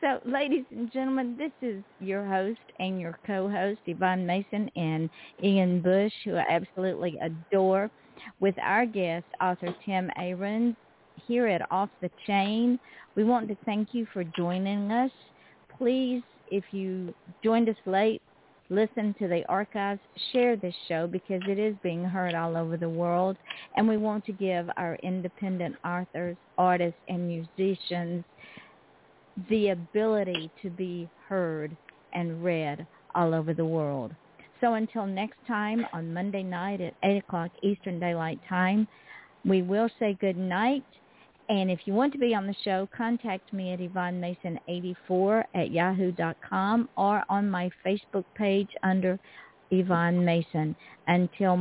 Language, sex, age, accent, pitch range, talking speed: English, female, 50-69, American, 175-215 Hz, 145 wpm